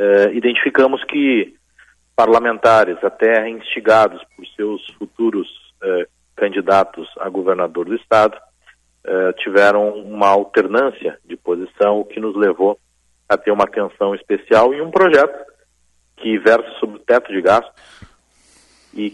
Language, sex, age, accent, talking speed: Portuguese, male, 40-59, Brazilian, 130 wpm